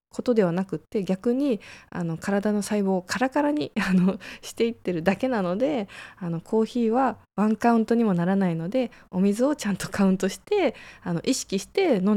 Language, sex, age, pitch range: Japanese, female, 20-39, 165-235 Hz